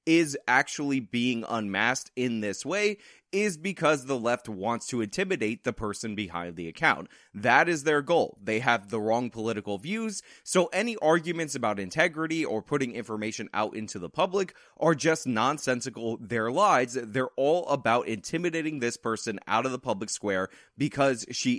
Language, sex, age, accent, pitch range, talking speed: English, male, 20-39, American, 115-165 Hz, 165 wpm